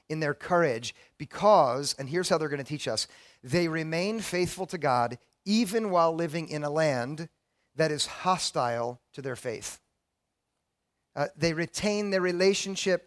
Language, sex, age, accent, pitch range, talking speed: English, male, 40-59, American, 135-175 Hz, 155 wpm